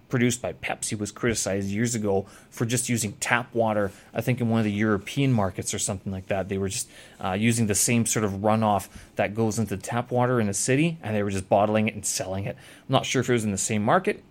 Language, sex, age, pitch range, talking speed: English, male, 30-49, 105-140 Hz, 255 wpm